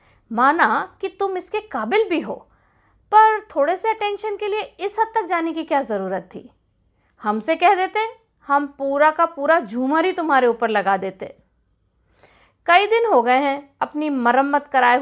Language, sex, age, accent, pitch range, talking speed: Hindi, female, 50-69, native, 255-360 Hz, 170 wpm